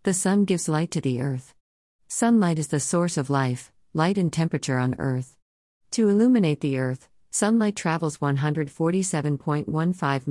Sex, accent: female, American